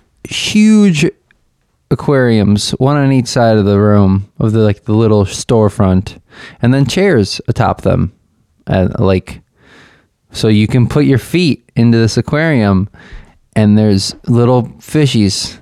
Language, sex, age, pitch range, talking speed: English, male, 20-39, 100-150 Hz, 135 wpm